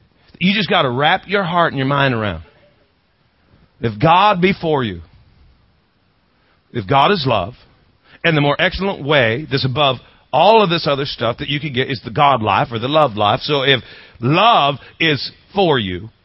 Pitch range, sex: 110-175 Hz, male